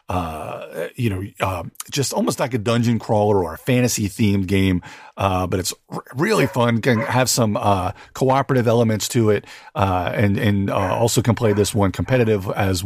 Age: 40-59